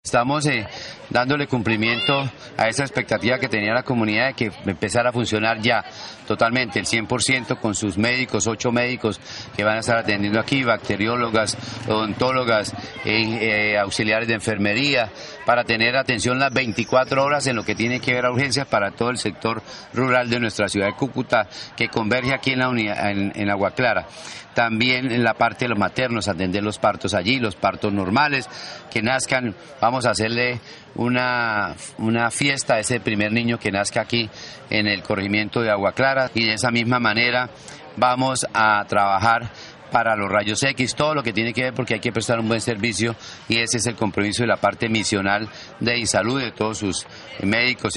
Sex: male